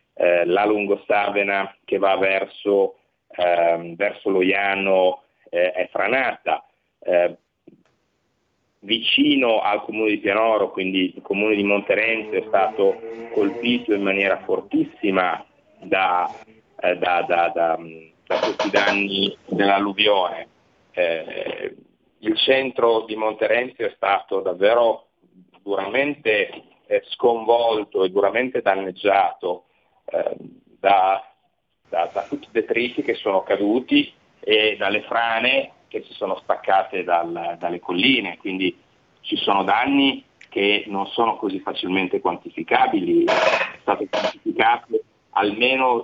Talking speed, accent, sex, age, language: 110 wpm, native, male, 40-59, Italian